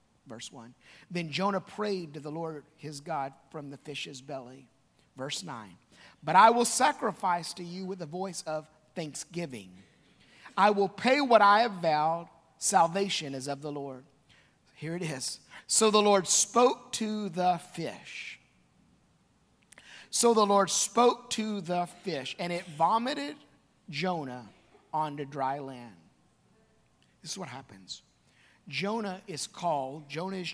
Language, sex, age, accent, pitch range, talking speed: English, male, 50-69, American, 140-205 Hz, 140 wpm